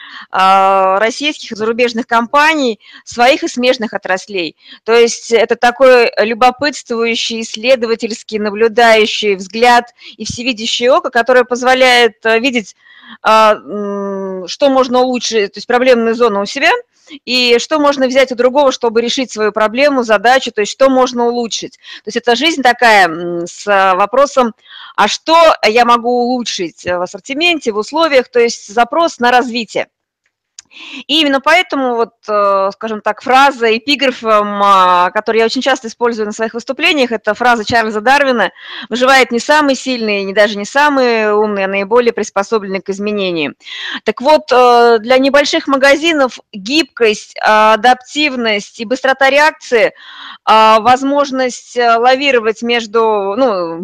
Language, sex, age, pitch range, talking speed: Russian, female, 20-39, 215-265 Hz, 130 wpm